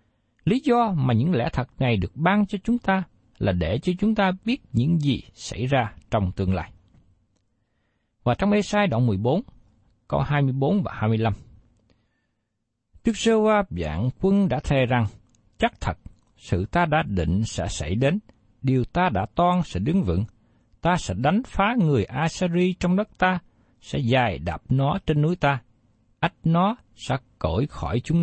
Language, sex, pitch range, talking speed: Vietnamese, male, 110-175 Hz, 170 wpm